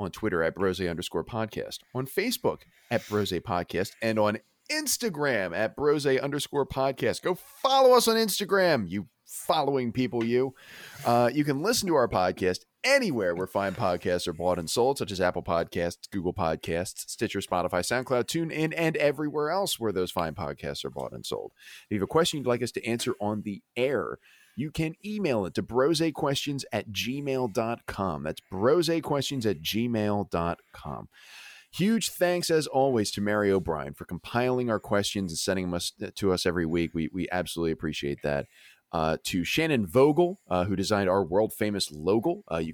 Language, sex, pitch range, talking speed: English, male, 90-150 Hz, 175 wpm